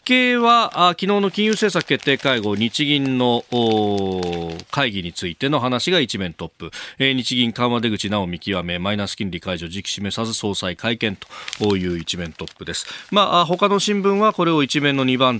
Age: 40-59